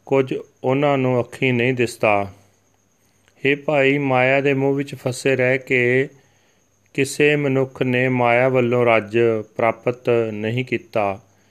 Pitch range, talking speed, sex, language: 115-135 Hz, 125 wpm, male, Punjabi